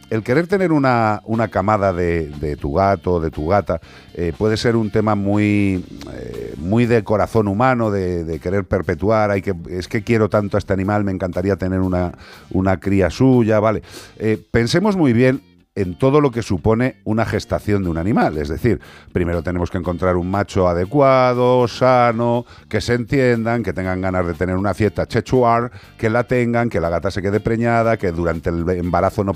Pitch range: 95-115 Hz